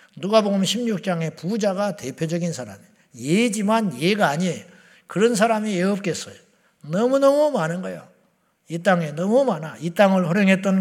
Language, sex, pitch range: Korean, male, 185-225 Hz